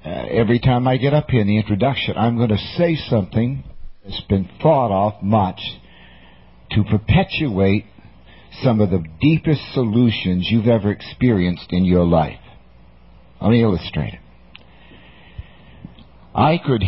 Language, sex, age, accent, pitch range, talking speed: English, male, 60-79, American, 100-145 Hz, 140 wpm